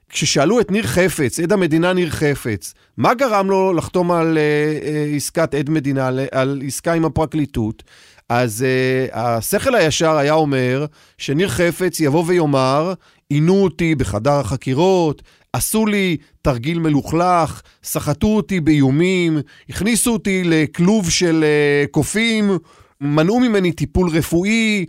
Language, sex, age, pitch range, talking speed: Hebrew, male, 40-59, 145-185 Hz, 125 wpm